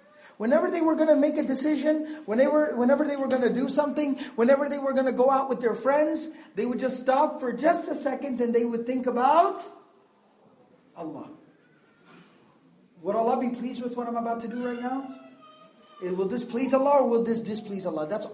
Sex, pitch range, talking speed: male, 235-285 Hz, 195 wpm